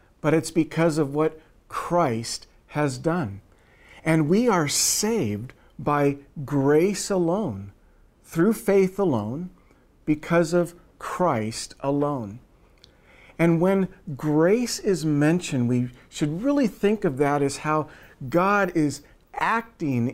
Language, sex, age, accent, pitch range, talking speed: English, male, 50-69, American, 135-180 Hz, 115 wpm